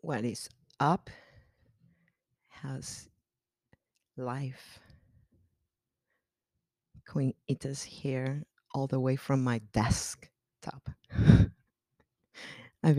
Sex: female